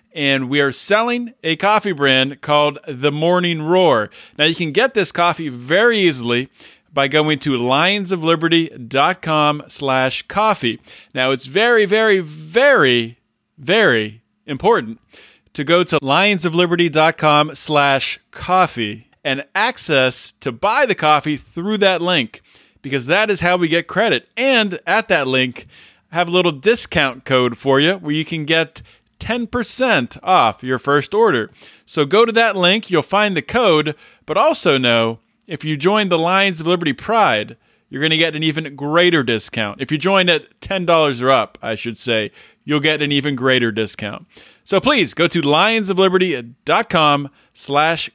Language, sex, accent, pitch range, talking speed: English, male, American, 135-180 Hz, 155 wpm